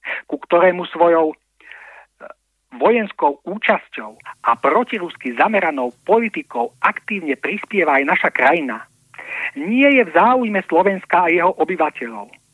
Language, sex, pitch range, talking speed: Slovak, male, 160-220 Hz, 105 wpm